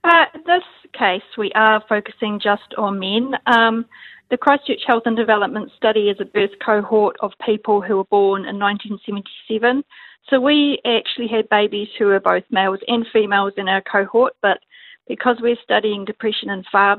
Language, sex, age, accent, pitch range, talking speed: English, female, 40-59, Australian, 210-255 Hz, 170 wpm